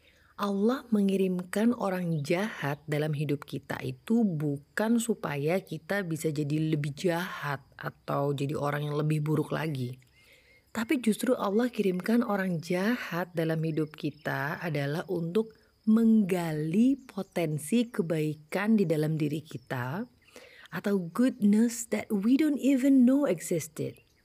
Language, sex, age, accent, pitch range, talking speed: Indonesian, female, 30-49, native, 150-210 Hz, 120 wpm